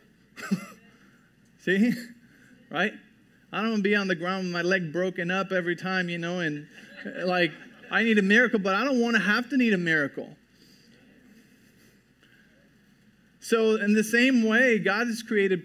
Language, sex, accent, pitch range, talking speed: English, male, American, 170-220 Hz, 165 wpm